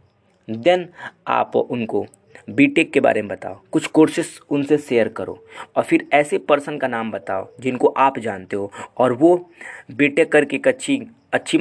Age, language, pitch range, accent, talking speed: 20-39, Hindi, 110-150 Hz, native, 155 wpm